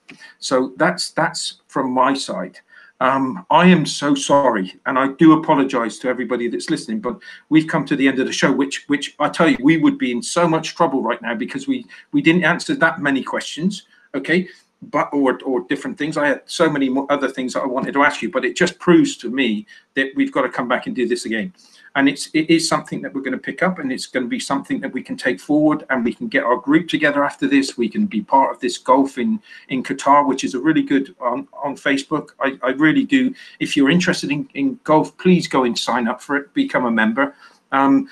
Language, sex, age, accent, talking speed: English, male, 50-69, British, 245 wpm